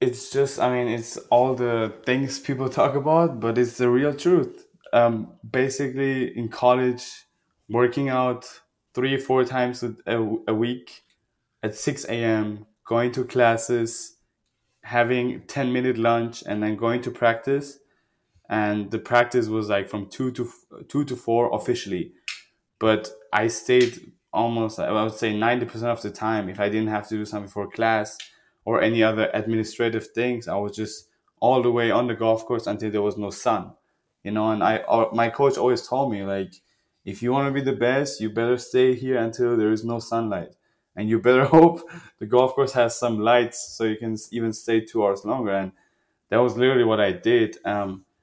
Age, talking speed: 20-39, 185 wpm